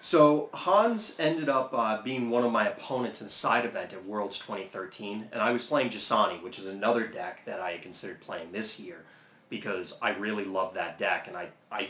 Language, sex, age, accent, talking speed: English, male, 30-49, American, 210 wpm